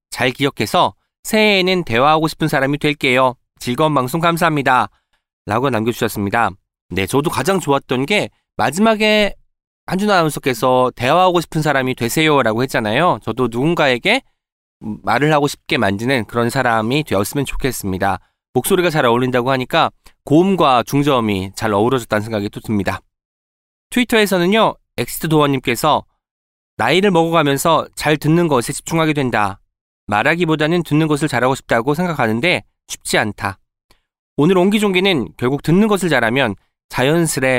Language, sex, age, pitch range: Korean, male, 20-39, 115-165 Hz